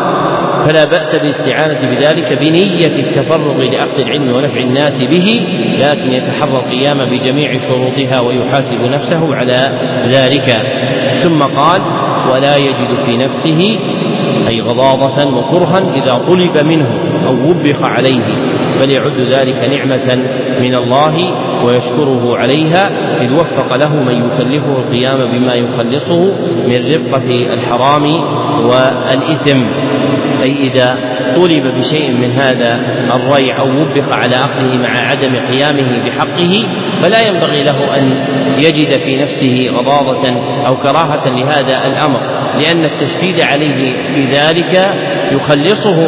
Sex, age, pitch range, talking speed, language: male, 40-59, 130-150 Hz, 110 wpm, Arabic